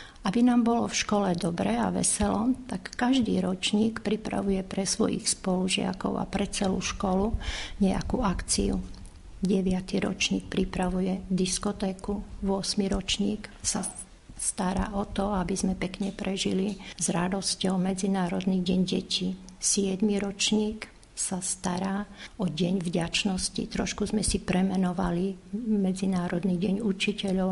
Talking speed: 120 wpm